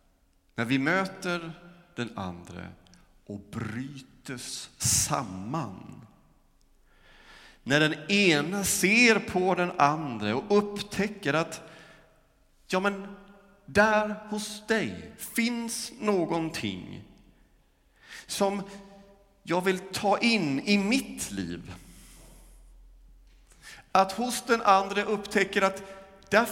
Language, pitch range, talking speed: Swedish, 135-210 Hz, 90 wpm